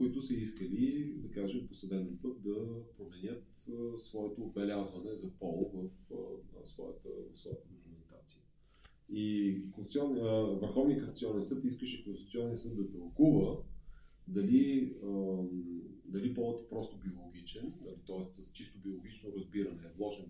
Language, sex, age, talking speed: Bulgarian, male, 30-49, 125 wpm